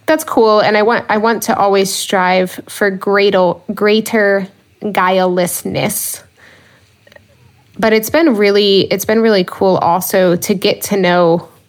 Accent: American